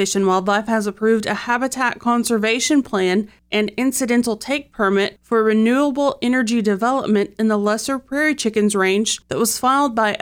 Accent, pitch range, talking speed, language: American, 210-250 Hz, 160 wpm, English